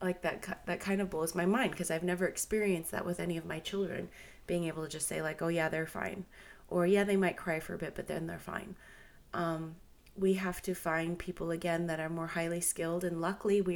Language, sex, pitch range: English, female, 165-185 Hz